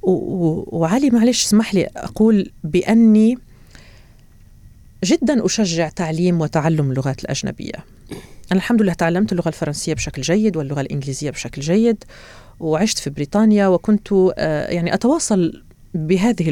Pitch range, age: 145-210 Hz, 40-59